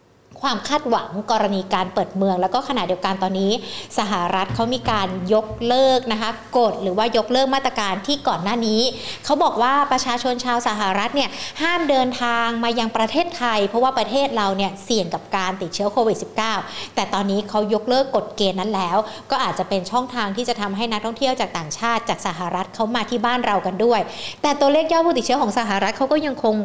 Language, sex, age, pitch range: Thai, female, 60-79, 200-255 Hz